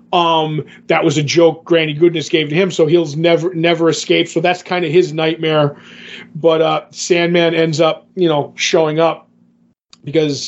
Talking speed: 175 wpm